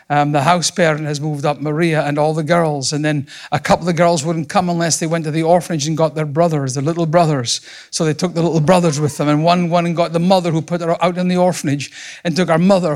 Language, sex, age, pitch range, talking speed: English, male, 50-69, 155-175 Hz, 275 wpm